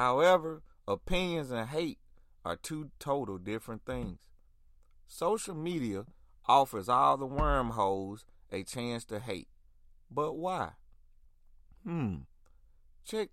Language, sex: English, male